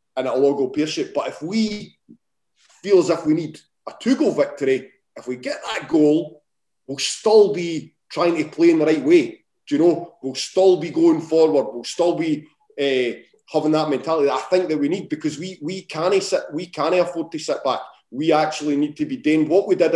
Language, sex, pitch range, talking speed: English, male, 140-160 Hz, 210 wpm